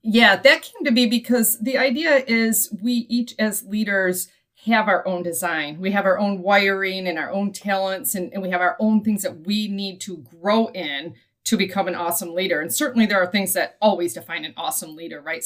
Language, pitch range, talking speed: English, 180-225 Hz, 215 wpm